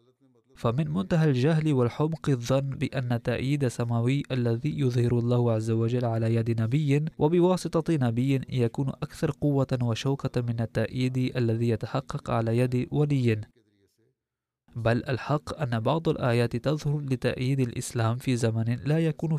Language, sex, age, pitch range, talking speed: Arabic, male, 20-39, 120-145 Hz, 125 wpm